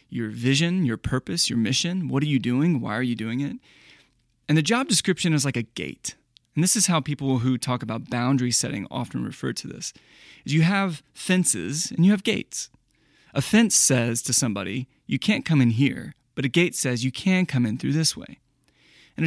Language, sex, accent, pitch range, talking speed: English, male, American, 120-160 Hz, 205 wpm